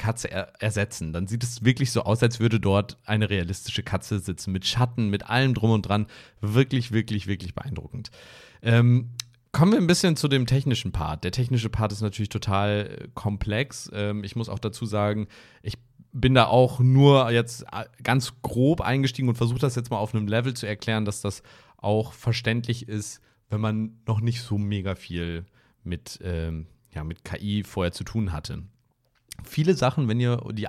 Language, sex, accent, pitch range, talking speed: German, male, German, 105-125 Hz, 180 wpm